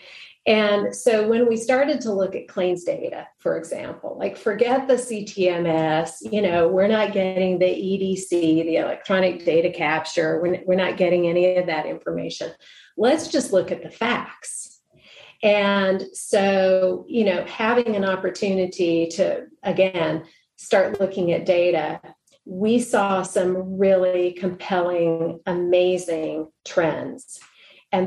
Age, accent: 40-59, American